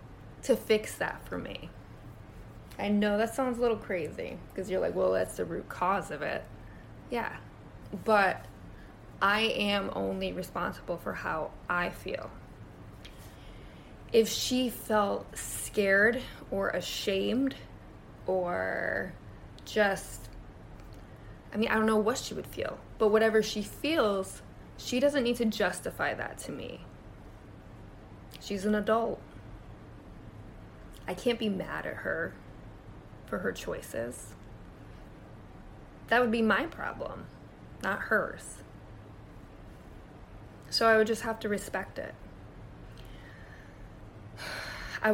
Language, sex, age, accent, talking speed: English, female, 20-39, American, 120 wpm